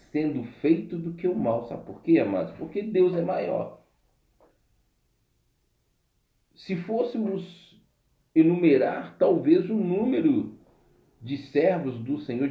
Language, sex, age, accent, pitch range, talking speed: Portuguese, male, 40-59, Brazilian, 125-180 Hz, 115 wpm